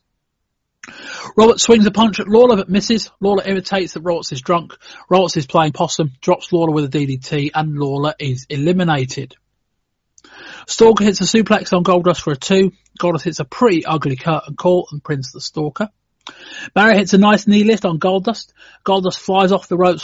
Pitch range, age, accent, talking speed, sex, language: 150-190 Hz, 30-49, British, 180 wpm, male, English